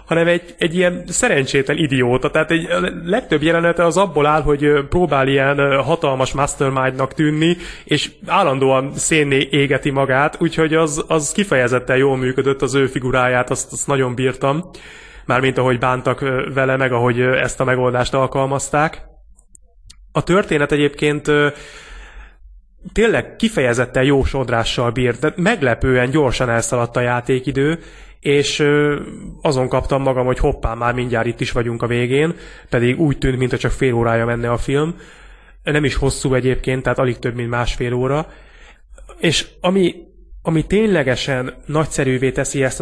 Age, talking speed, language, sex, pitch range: 30-49, 140 wpm, Hungarian, male, 125-155 Hz